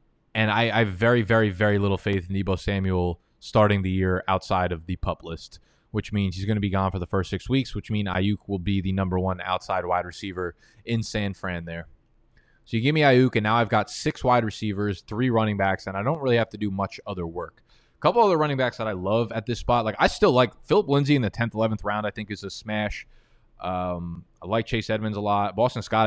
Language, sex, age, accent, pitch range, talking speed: English, male, 20-39, American, 95-115 Hz, 250 wpm